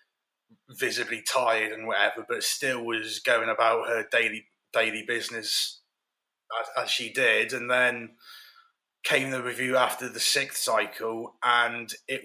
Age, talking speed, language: 30-49, 135 wpm, English